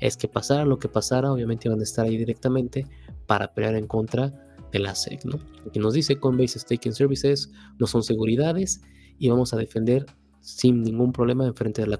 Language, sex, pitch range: Spanish, male, 105-130 Hz